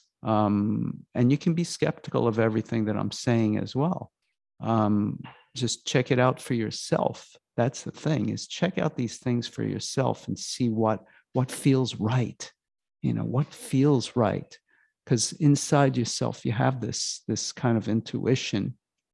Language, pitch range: English, 110-135 Hz